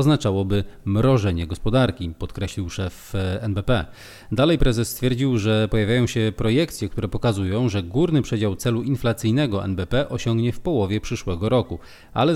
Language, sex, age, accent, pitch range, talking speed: Polish, male, 30-49, native, 95-125 Hz, 130 wpm